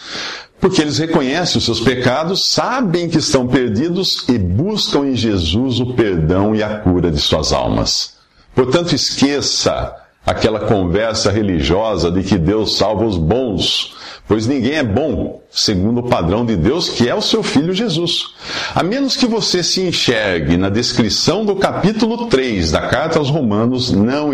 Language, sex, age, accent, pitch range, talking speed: Portuguese, male, 50-69, Brazilian, 95-135 Hz, 160 wpm